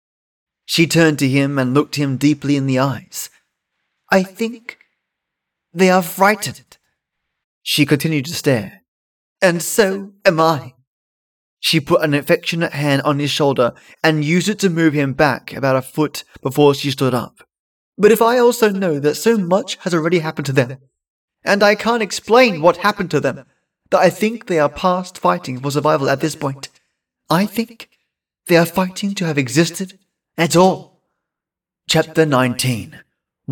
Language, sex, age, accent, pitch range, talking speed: English, male, 30-49, British, 135-180 Hz, 165 wpm